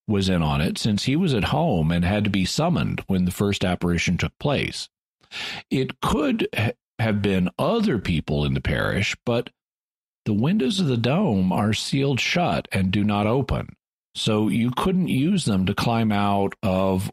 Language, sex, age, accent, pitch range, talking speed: English, male, 50-69, American, 95-125 Hz, 180 wpm